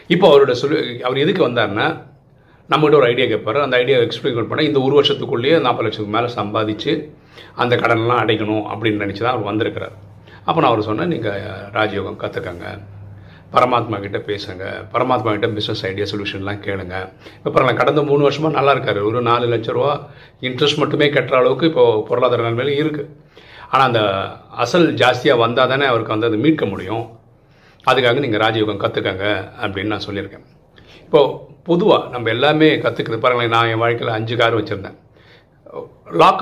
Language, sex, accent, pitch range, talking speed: Tamil, male, native, 110-150 Hz, 155 wpm